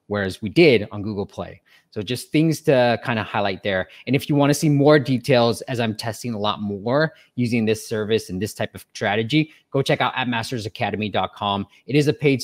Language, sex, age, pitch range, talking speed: English, male, 20-39, 110-145 Hz, 215 wpm